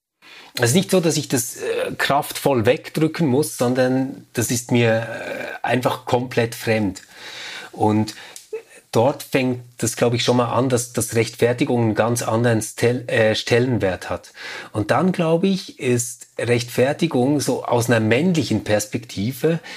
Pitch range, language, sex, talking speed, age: 115-140 Hz, German, male, 150 wpm, 30-49